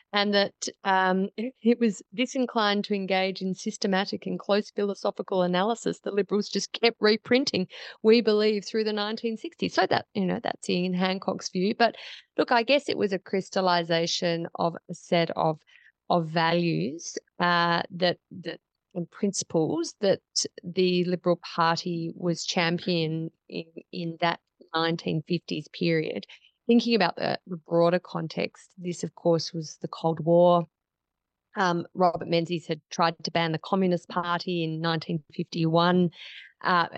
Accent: Australian